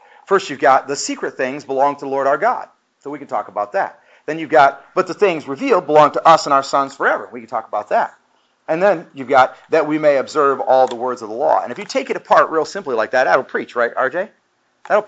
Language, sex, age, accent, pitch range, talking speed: English, male, 40-59, American, 125-170 Hz, 265 wpm